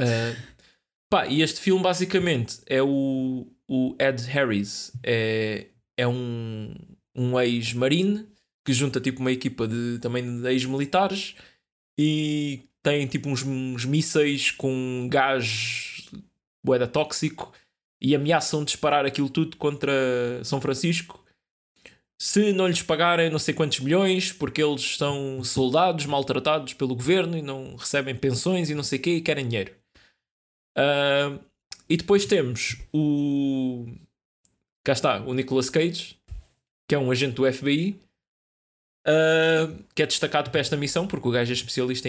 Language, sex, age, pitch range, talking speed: Portuguese, male, 20-39, 120-155 Hz, 130 wpm